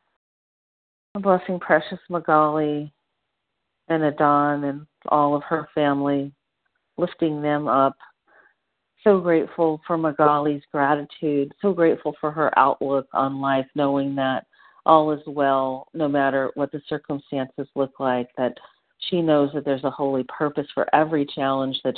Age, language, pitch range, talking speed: 40-59, English, 130-150 Hz, 135 wpm